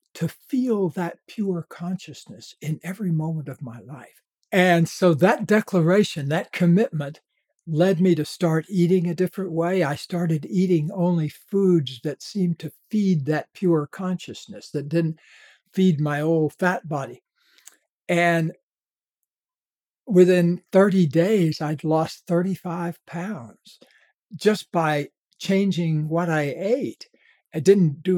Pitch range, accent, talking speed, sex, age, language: 160-195 Hz, American, 130 wpm, male, 60-79, English